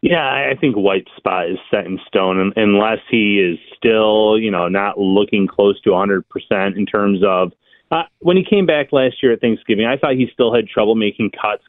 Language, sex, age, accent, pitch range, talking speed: English, male, 30-49, American, 100-125 Hz, 205 wpm